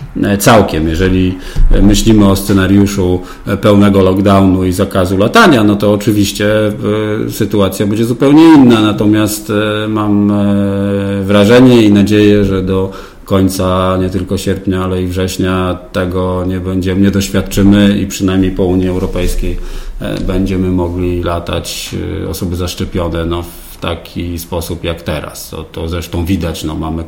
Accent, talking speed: native, 125 wpm